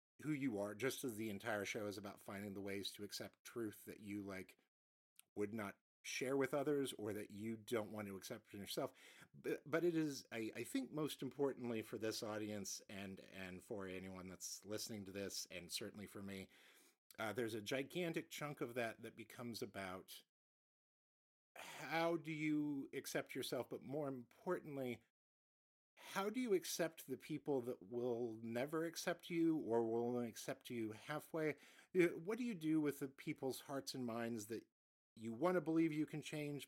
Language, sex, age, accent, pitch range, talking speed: English, male, 50-69, American, 105-145 Hz, 180 wpm